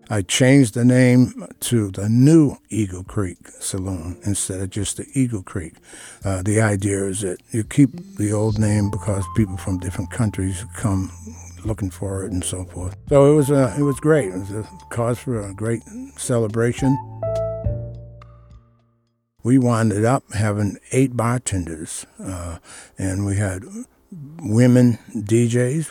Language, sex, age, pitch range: English, male, 60-79, 95-120 Hz